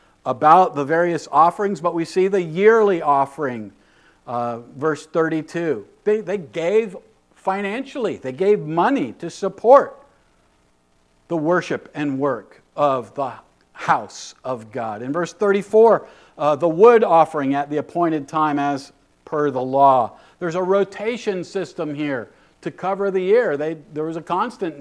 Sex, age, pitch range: male, 50-69, 120-185 Hz